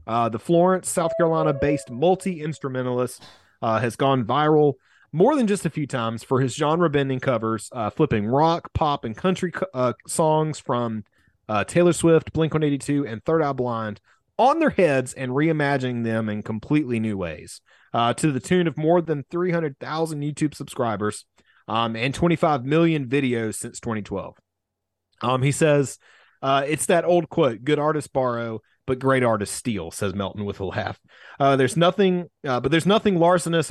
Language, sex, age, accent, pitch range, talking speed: English, male, 30-49, American, 115-155 Hz, 165 wpm